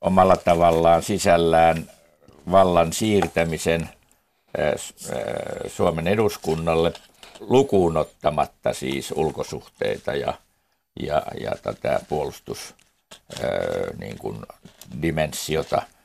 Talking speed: 55 wpm